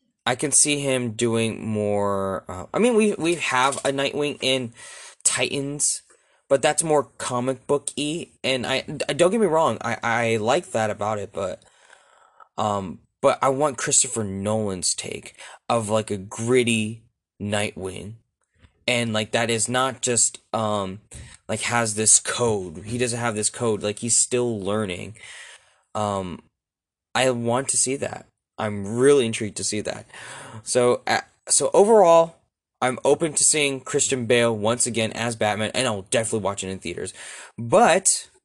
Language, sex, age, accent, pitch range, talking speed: English, male, 20-39, American, 105-130 Hz, 160 wpm